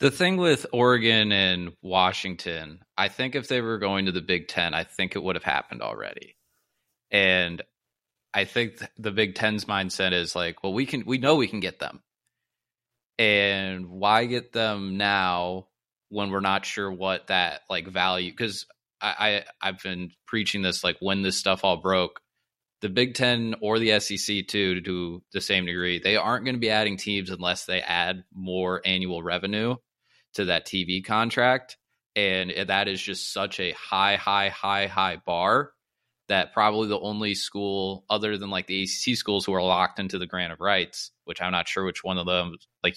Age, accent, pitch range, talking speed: 20-39, American, 90-105 Hz, 190 wpm